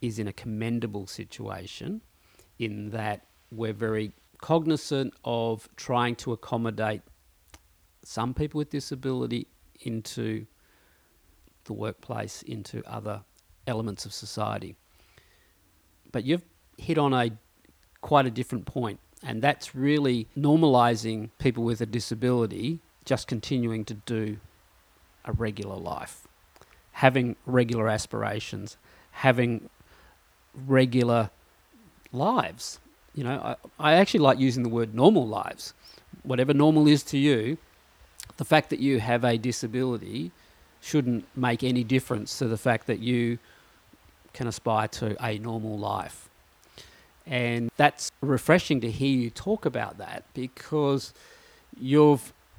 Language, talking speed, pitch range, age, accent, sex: English, 120 wpm, 105-130 Hz, 40-59, Australian, male